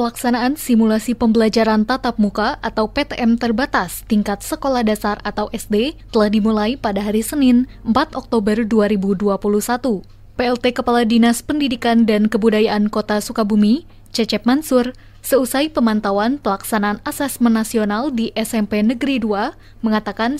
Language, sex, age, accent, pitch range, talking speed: Indonesian, female, 20-39, native, 215-250 Hz, 120 wpm